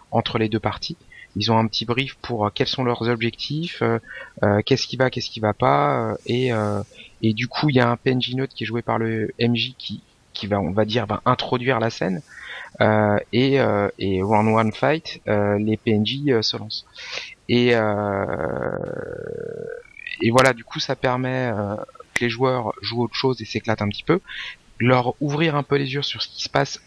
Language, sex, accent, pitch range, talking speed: French, male, French, 105-130 Hz, 205 wpm